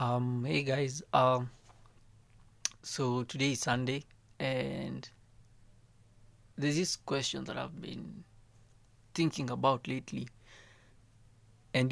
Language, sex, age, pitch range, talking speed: English, male, 20-39, 110-130 Hz, 95 wpm